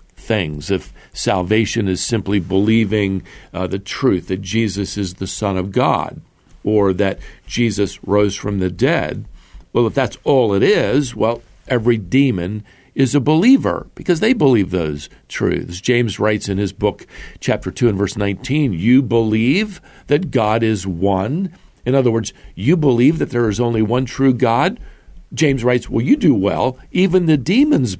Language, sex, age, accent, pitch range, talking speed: English, male, 50-69, American, 100-135 Hz, 165 wpm